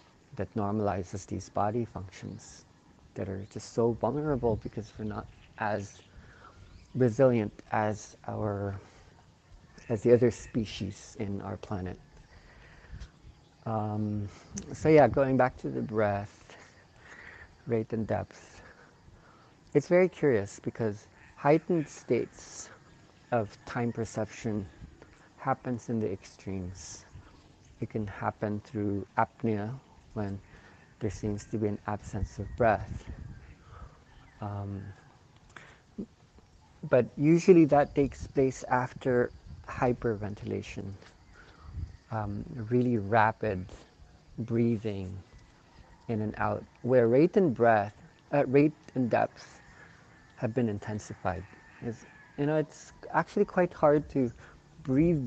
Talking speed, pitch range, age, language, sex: 105 wpm, 100-125 Hz, 50-69, English, male